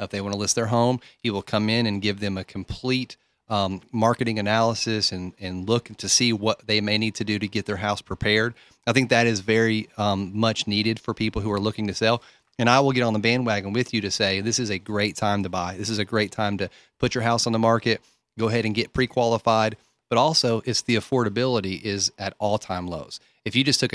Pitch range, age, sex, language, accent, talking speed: 100-120 Hz, 30-49, male, English, American, 245 wpm